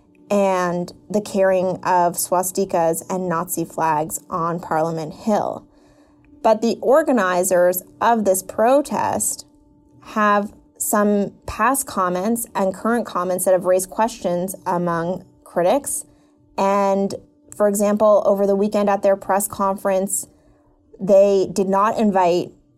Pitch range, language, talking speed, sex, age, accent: 180-210 Hz, English, 115 wpm, female, 20-39, American